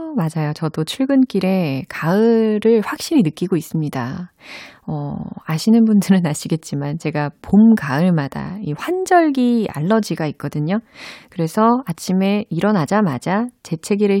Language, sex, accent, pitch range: Korean, female, native, 160-230 Hz